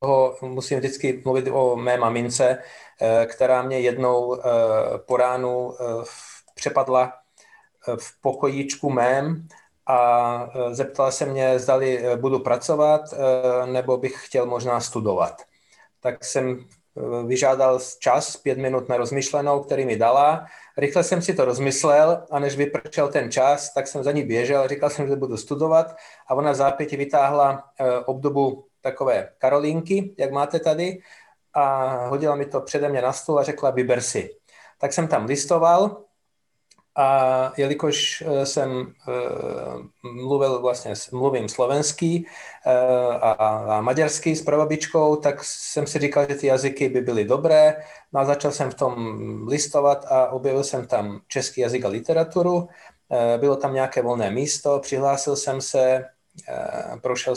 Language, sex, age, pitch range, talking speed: Czech, male, 30-49, 125-145 Hz, 135 wpm